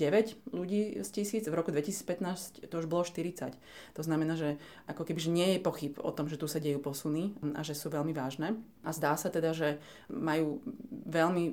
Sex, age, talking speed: female, 20-39, 200 wpm